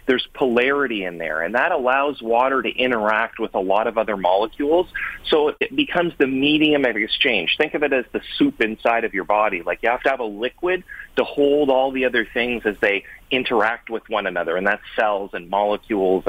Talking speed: 210 wpm